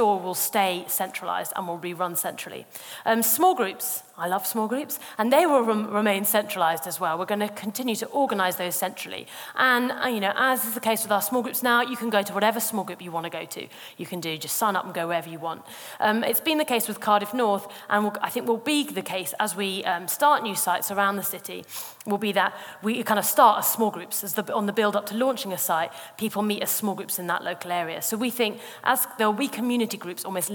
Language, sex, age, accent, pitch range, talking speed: English, female, 30-49, British, 180-225 Hz, 250 wpm